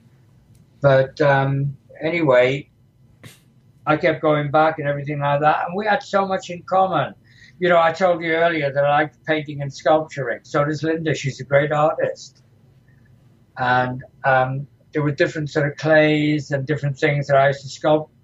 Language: English